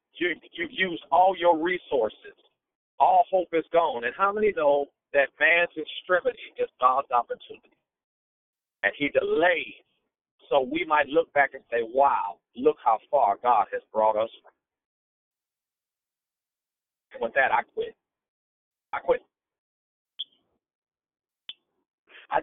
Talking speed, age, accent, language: 120 wpm, 50-69, American, English